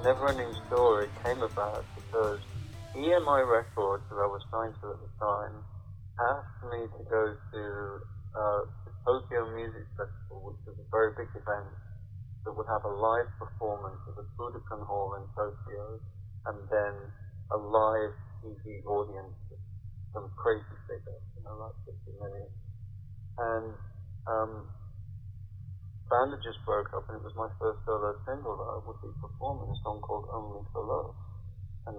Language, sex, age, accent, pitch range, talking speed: English, male, 30-49, British, 100-110 Hz, 155 wpm